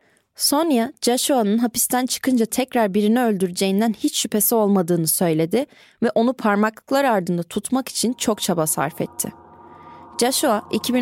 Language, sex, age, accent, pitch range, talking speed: Turkish, female, 20-39, native, 175-240 Hz, 120 wpm